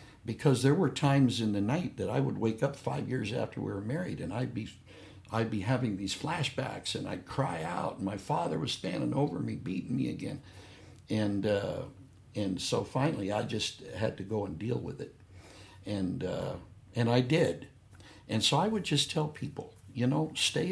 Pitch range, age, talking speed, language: 100-135 Hz, 60-79, 200 wpm, English